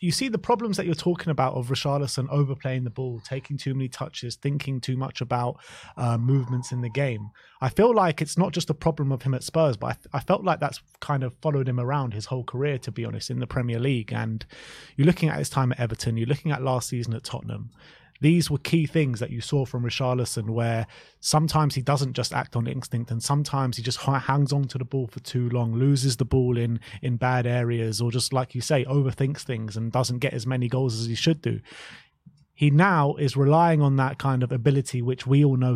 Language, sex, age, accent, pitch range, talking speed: English, male, 20-39, British, 125-145 Hz, 235 wpm